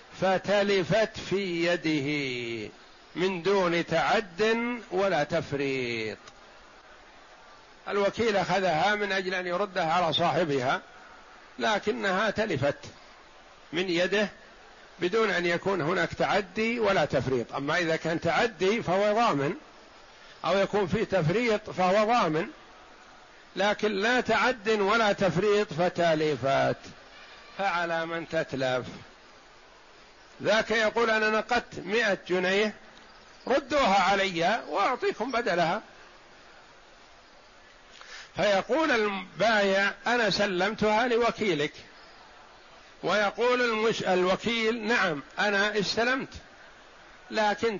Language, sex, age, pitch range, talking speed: Arabic, male, 50-69, 170-220 Hz, 85 wpm